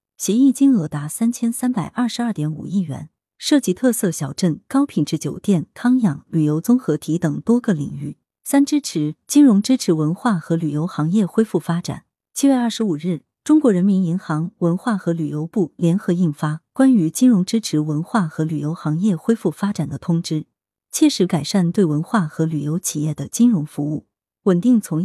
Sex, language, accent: female, Chinese, native